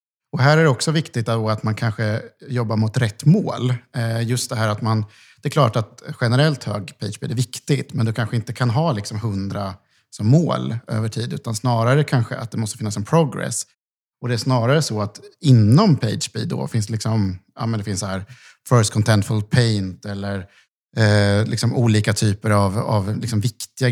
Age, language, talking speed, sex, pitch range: 50-69, Swedish, 200 wpm, male, 100-125 Hz